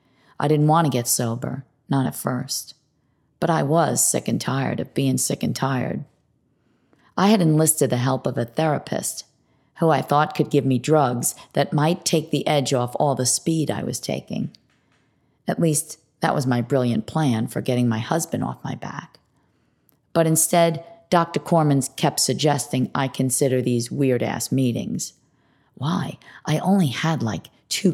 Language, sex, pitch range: English, female, 130-155 Hz